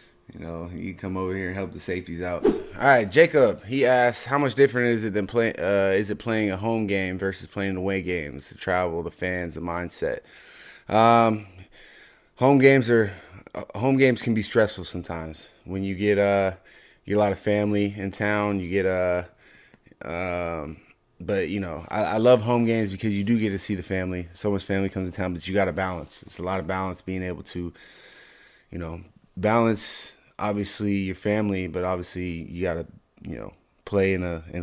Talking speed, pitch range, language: 210 wpm, 90-105 Hz, English